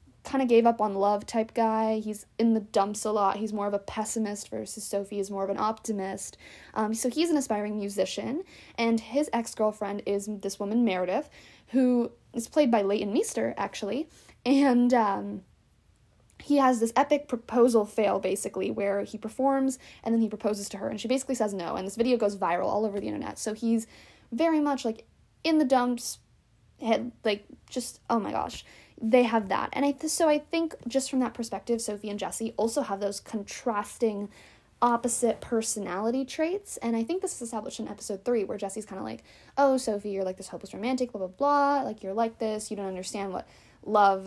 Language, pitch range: English, 205-250 Hz